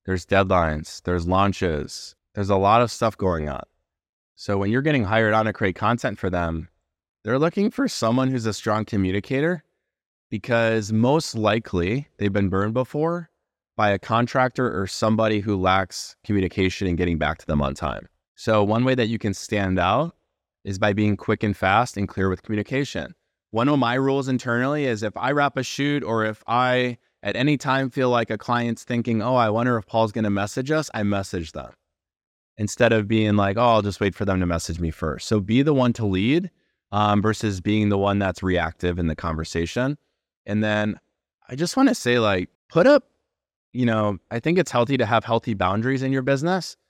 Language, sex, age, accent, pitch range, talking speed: English, male, 20-39, American, 95-125 Hz, 200 wpm